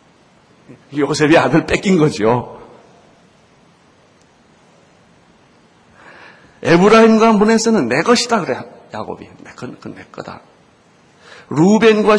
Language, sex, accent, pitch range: Korean, male, native, 140-215 Hz